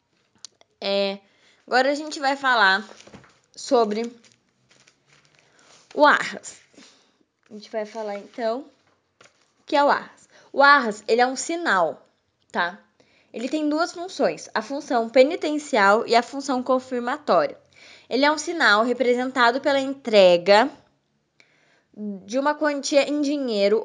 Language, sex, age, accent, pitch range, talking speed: Portuguese, female, 10-29, Brazilian, 230-290 Hz, 120 wpm